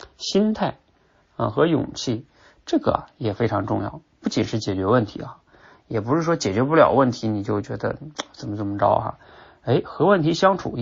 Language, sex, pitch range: Chinese, male, 105-145 Hz